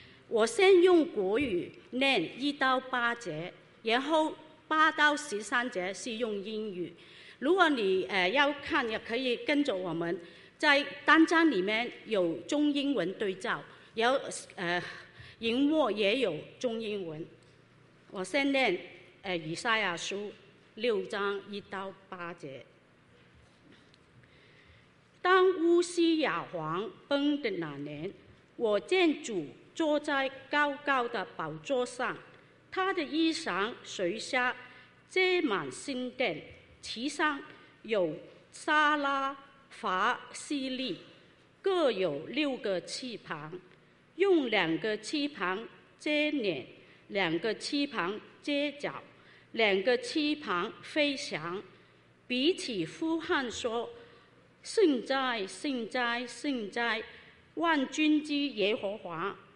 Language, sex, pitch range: English, female, 200-300 Hz